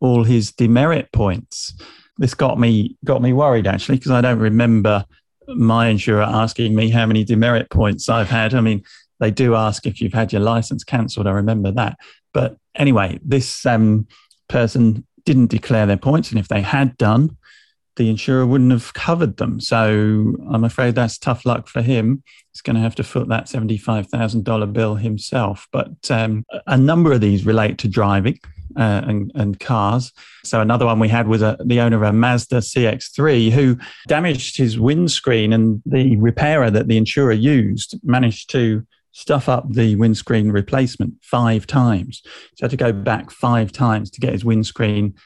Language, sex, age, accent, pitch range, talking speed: English, male, 40-59, British, 110-125 Hz, 175 wpm